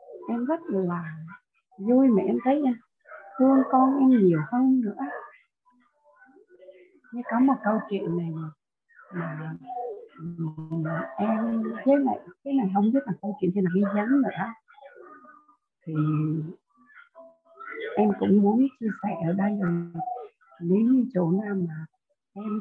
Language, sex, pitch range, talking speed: Vietnamese, female, 180-250 Hz, 130 wpm